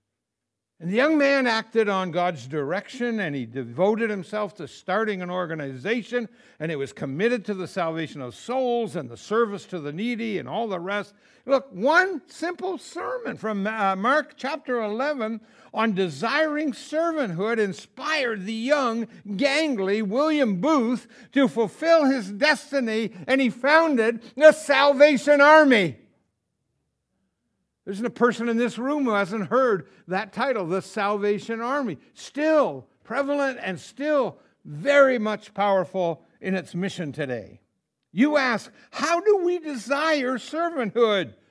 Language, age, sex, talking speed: English, 60-79, male, 135 wpm